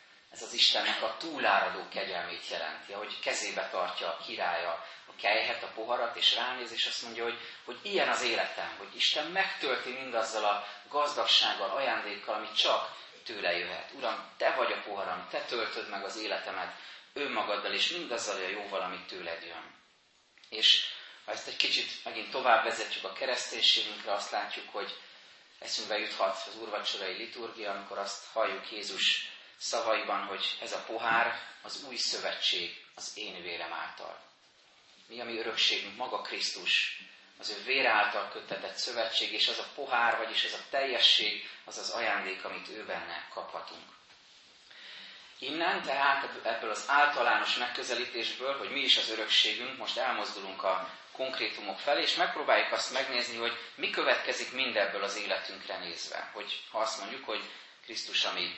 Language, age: Hungarian, 30-49